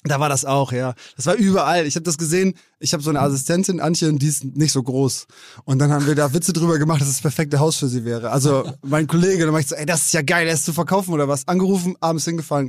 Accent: German